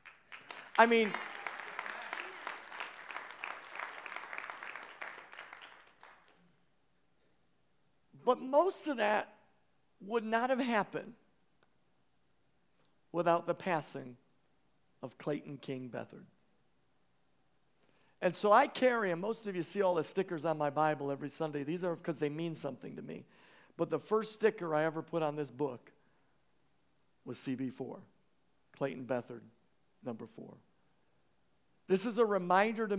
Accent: American